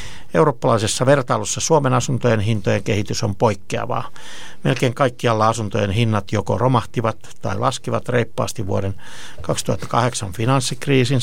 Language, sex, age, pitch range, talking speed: Finnish, male, 60-79, 100-125 Hz, 105 wpm